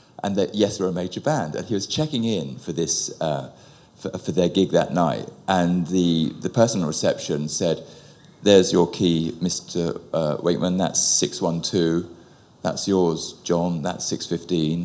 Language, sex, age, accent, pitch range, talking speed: English, male, 40-59, British, 90-135 Hz, 165 wpm